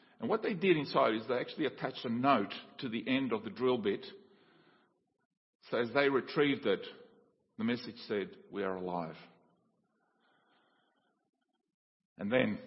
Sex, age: male, 50-69